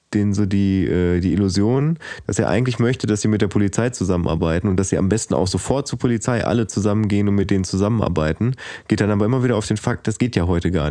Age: 20-39